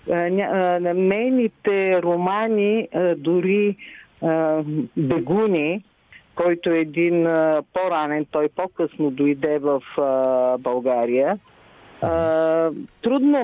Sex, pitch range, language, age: female, 165-205 Hz, Bulgarian, 50-69